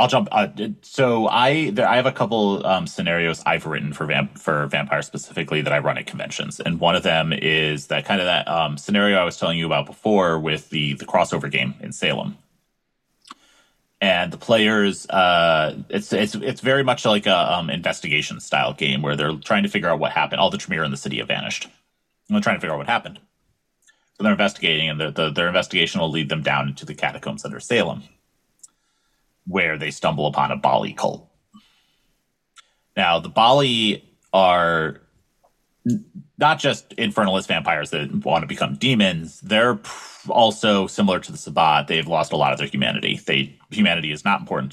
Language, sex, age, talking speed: English, male, 30-49, 190 wpm